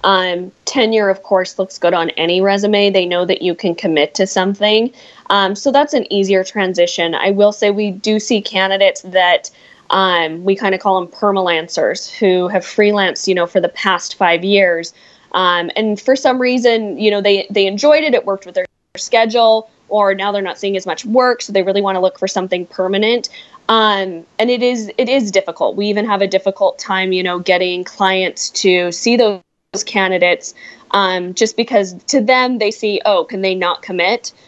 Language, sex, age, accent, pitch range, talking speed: English, female, 20-39, American, 190-225 Hz, 200 wpm